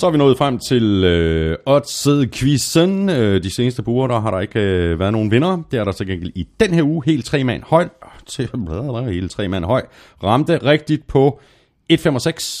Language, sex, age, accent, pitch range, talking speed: Danish, male, 30-49, native, 90-140 Hz, 175 wpm